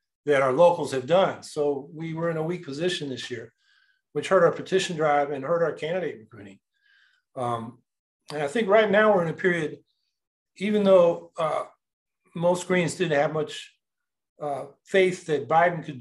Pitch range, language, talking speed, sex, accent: 140-190 Hz, English, 175 wpm, male, American